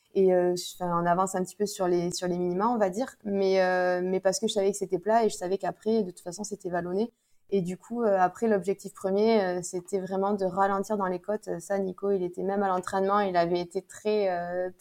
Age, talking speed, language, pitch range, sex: 20-39, 245 wpm, French, 175-200 Hz, female